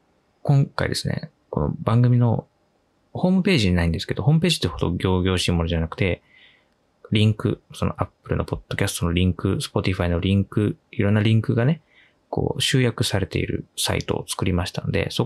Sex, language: male, Japanese